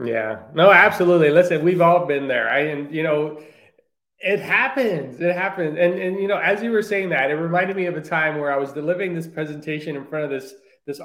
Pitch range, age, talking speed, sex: 150-205 Hz, 20-39, 230 wpm, male